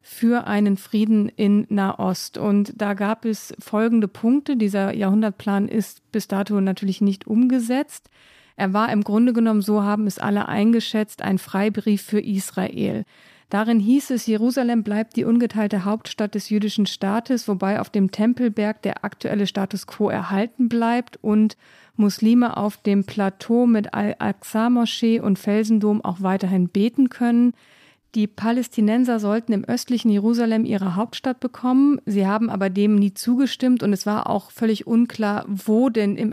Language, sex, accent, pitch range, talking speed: German, female, German, 205-235 Hz, 150 wpm